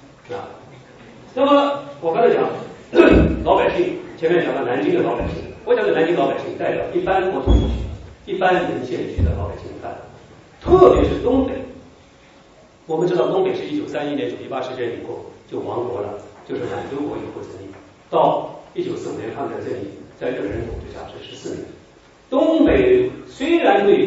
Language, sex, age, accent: Chinese, male, 40-59, native